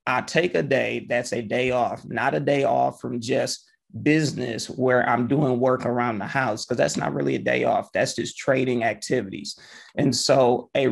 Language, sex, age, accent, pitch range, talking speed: English, male, 30-49, American, 125-145 Hz, 200 wpm